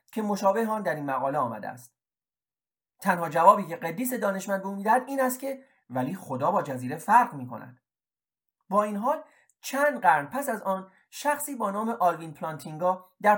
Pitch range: 150-215 Hz